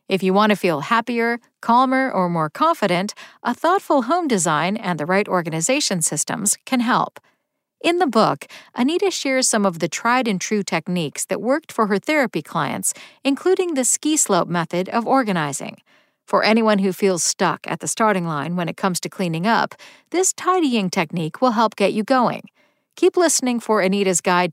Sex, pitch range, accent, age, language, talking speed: female, 180-260 Hz, American, 50-69, English, 175 wpm